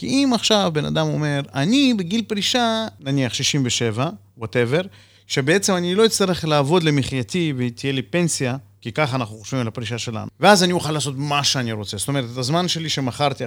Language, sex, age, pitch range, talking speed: Hebrew, male, 30-49, 125-185 Hz, 185 wpm